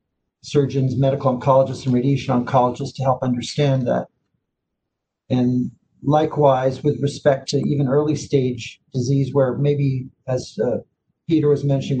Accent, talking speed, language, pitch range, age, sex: American, 130 wpm, English, 130-145 Hz, 50-69, male